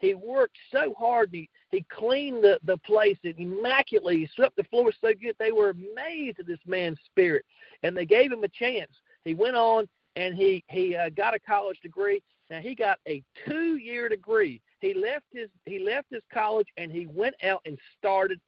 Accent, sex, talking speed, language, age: American, male, 200 wpm, English, 50-69